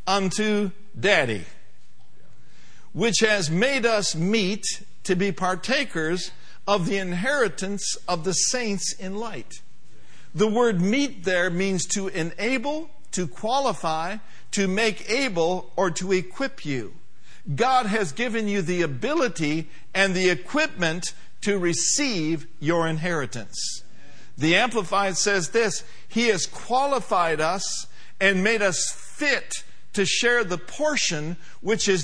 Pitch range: 160-215 Hz